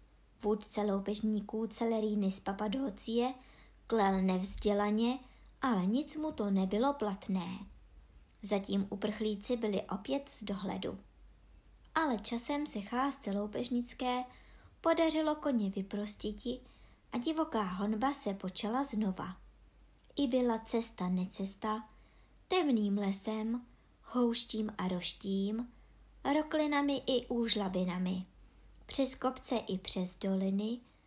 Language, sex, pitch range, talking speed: Czech, male, 200-260 Hz, 95 wpm